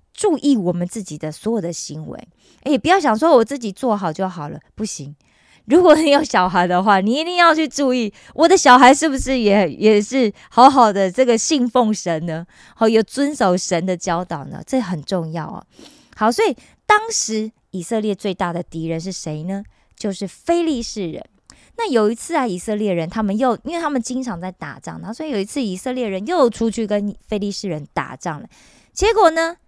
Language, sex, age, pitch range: Korean, female, 20-39, 185-275 Hz